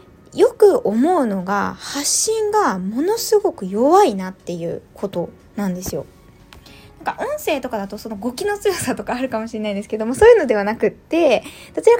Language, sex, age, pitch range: Japanese, female, 20-39, 210-355 Hz